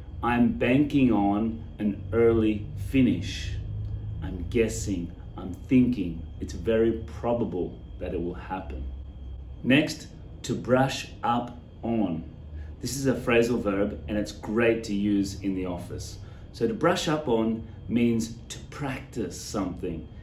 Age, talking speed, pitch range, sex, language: 30-49, 130 wpm, 95-120 Hz, male, English